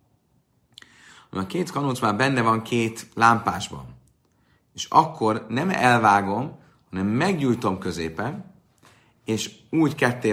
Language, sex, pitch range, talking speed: Hungarian, male, 95-125 Hz, 105 wpm